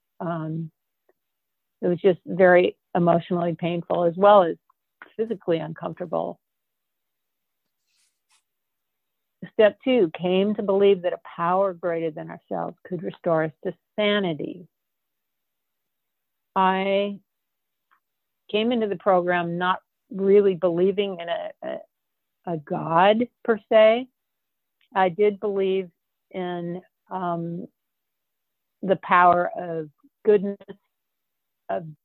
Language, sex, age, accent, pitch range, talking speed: English, female, 50-69, American, 175-200 Hz, 100 wpm